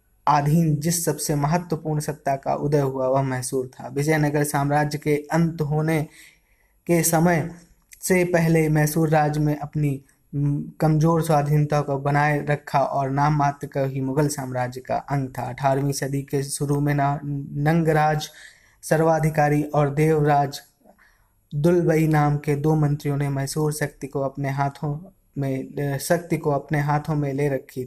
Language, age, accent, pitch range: Hindi, 20-39, native, 140-155 Hz